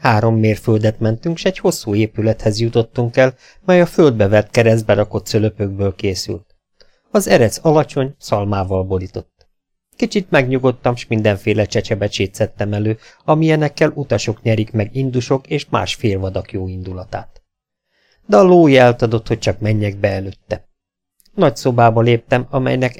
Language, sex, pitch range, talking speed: Hungarian, male, 105-125 Hz, 135 wpm